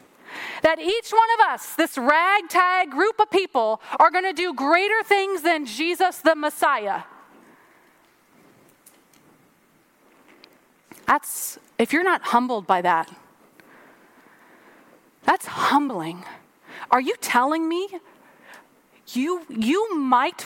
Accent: American